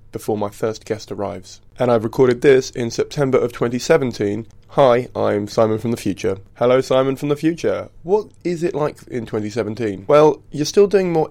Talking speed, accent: 185 wpm, British